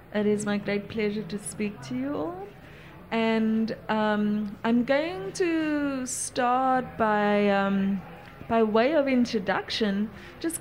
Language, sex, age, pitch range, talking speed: English, female, 30-49, 200-245 Hz, 135 wpm